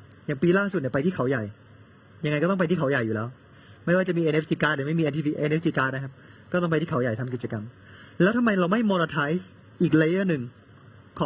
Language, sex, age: Thai, male, 20-39